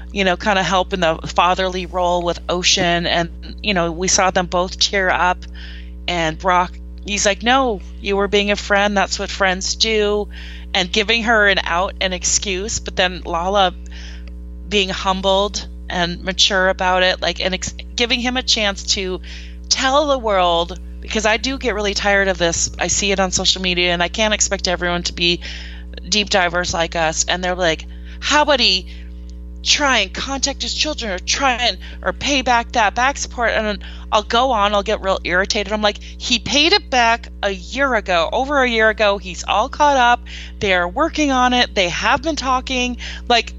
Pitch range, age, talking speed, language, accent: 175-225 Hz, 30-49, 190 wpm, English, American